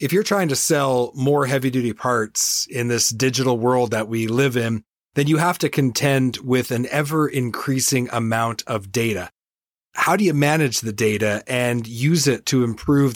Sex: male